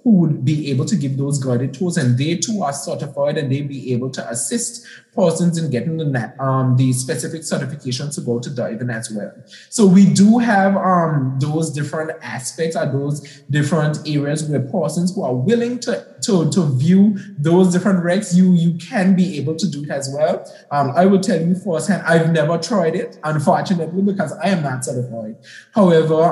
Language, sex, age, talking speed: English, male, 20-39, 195 wpm